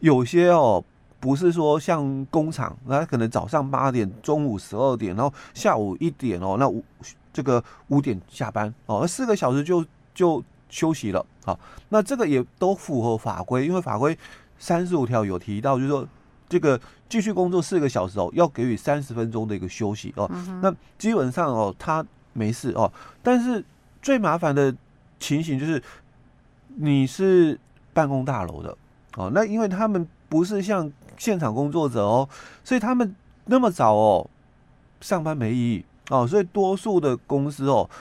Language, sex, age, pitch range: Chinese, male, 30-49, 115-175 Hz